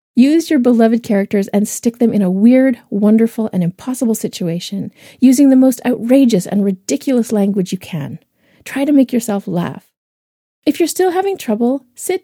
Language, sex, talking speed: English, female, 165 wpm